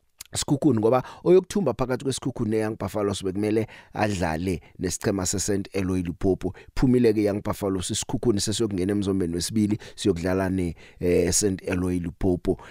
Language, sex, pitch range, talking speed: English, male, 90-115 Hz, 120 wpm